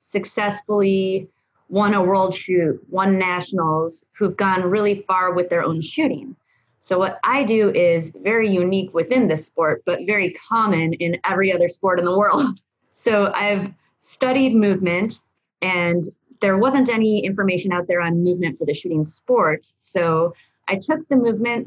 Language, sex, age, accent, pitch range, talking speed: English, female, 20-39, American, 175-205 Hz, 160 wpm